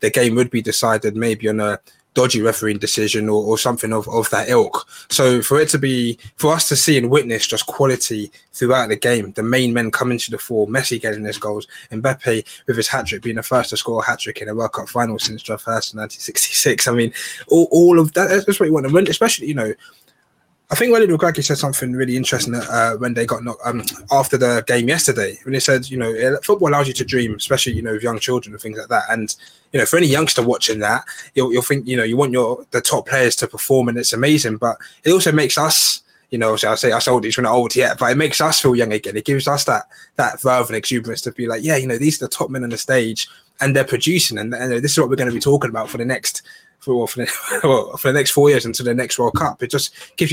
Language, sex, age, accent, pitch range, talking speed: English, male, 20-39, British, 115-140 Hz, 265 wpm